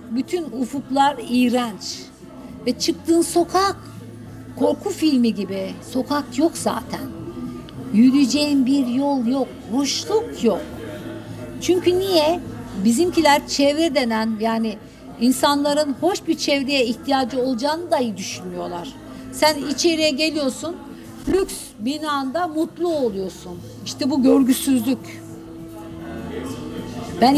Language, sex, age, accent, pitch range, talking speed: Turkish, female, 60-79, native, 225-295 Hz, 95 wpm